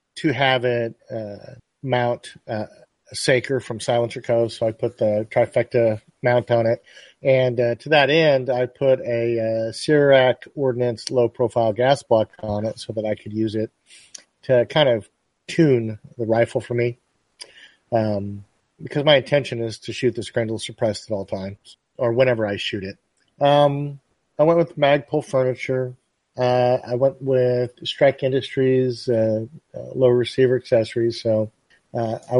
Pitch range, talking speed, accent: 115-135 Hz, 160 wpm, American